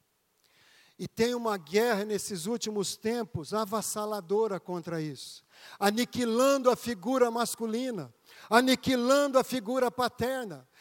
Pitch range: 180-240 Hz